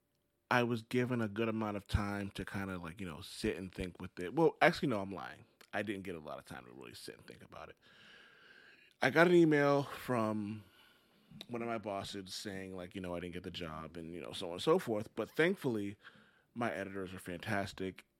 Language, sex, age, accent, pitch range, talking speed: English, male, 30-49, American, 95-120 Hz, 230 wpm